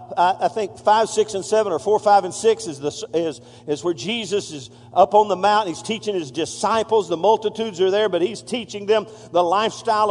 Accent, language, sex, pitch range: American, English, male, 175-250 Hz